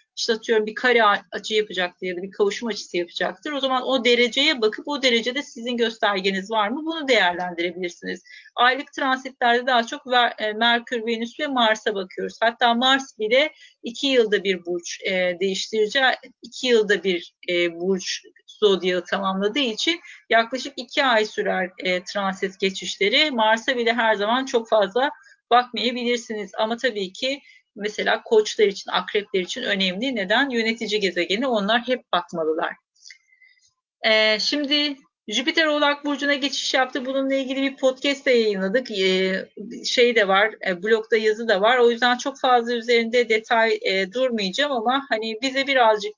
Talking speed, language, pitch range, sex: 140 wpm, Turkish, 200-260 Hz, female